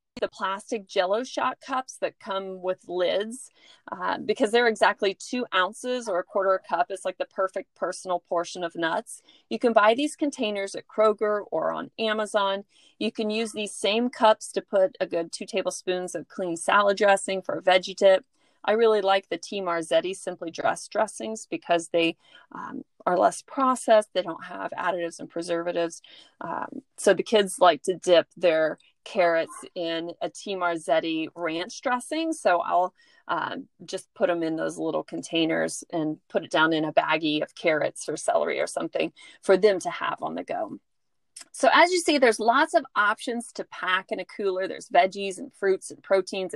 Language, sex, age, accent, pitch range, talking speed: English, female, 40-59, American, 175-235 Hz, 185 wpm